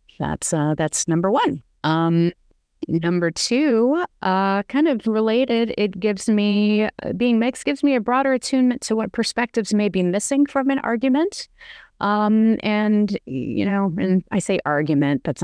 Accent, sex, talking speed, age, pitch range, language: American, female, 155 wpm, 30-49, 140-210 Hz, English